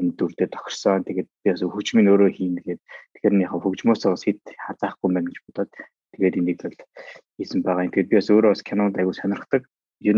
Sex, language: male, English